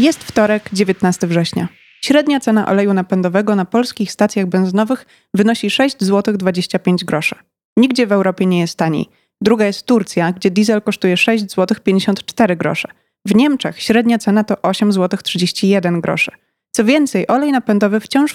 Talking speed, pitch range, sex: 135 wpm, 190-235 Hz, female